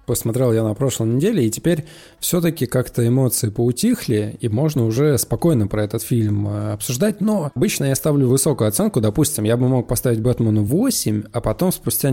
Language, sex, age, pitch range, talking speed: Russian, male, 20-39, 115-155 Hz, 175 wpm